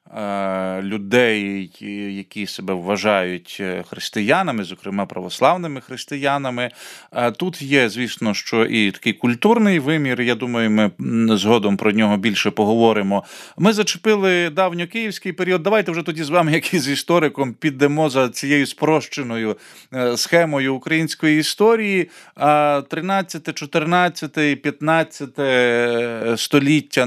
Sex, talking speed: male, 105 wpm